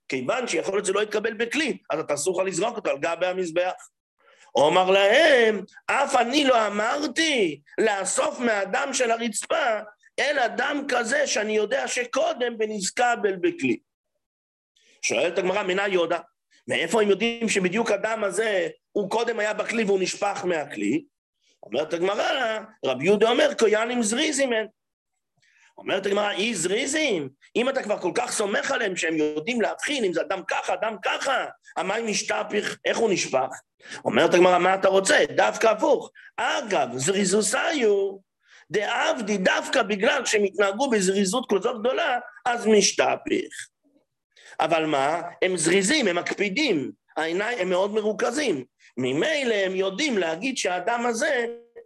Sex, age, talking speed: male, 50-69, 95 wpm